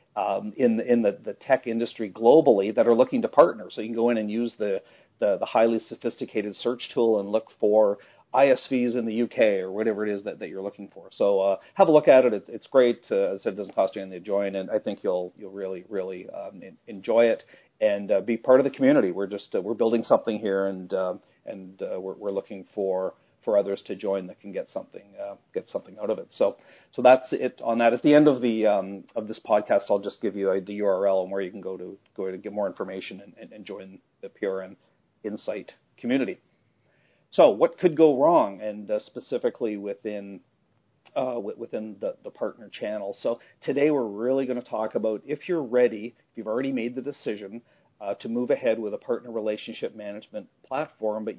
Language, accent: English, American